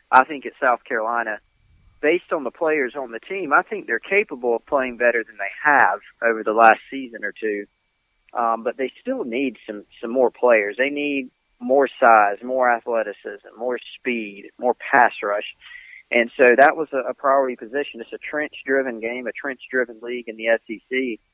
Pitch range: 115-125 Hz